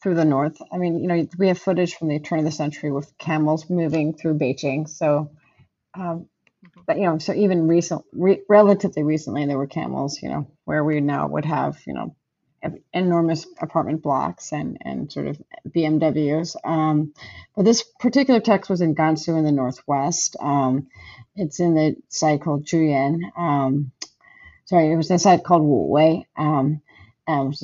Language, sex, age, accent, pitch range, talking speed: English, female, 30-49, American, 145-175 Hz, 175 wpm